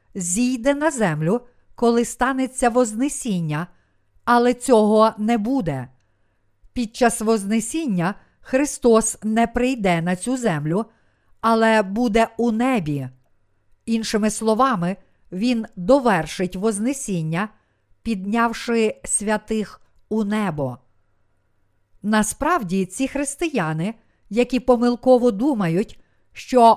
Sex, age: female, 50-69